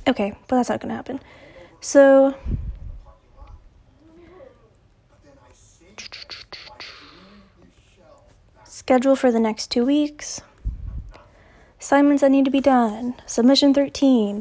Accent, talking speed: American, 90 wpm